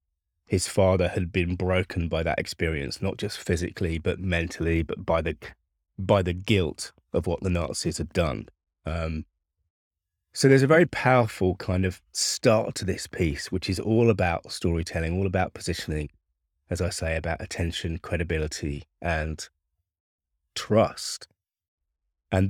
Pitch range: 80-95 Hz